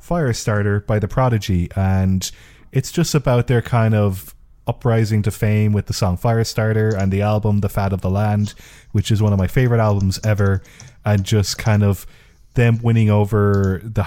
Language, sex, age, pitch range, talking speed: English, male, 20-39, 95-110 Hz, 180 wpm